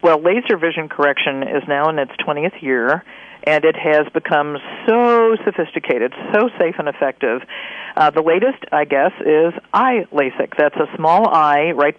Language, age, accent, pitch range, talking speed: English, 50-69, American, 145-180 Hz, 160 wpm